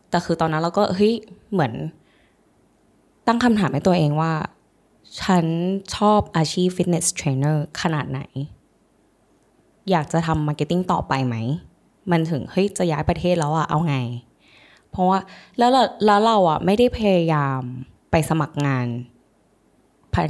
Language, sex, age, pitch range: Thai, female, 10-29, 150-200 Hz